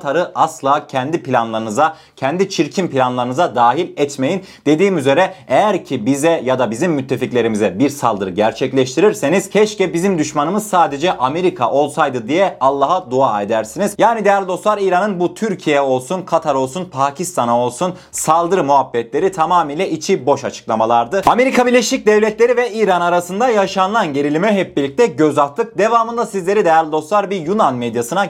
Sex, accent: male, native